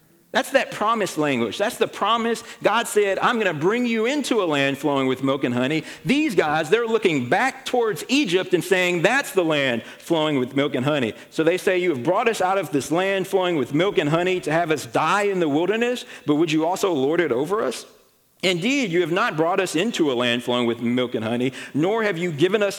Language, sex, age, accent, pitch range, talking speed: English, male, 40-59, American, 145-205 Hz, 230 wpm